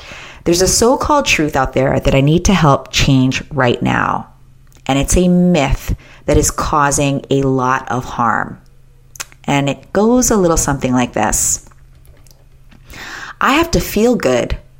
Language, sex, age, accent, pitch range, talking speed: English, female, 30-49, American, 130-175 Hz, 155 wpm